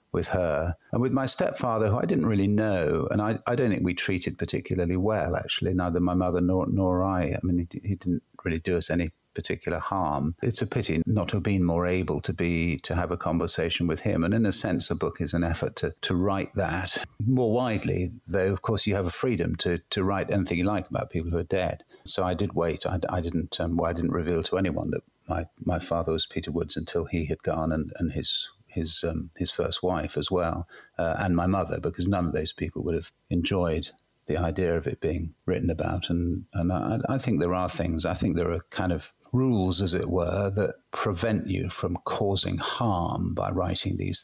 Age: 50-69